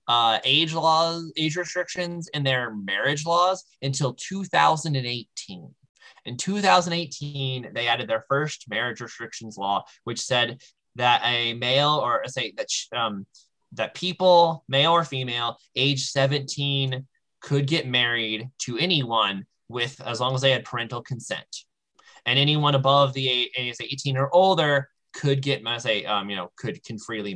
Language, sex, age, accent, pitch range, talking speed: English, male, 20-39, American, 115-145 Hz, 145 wpm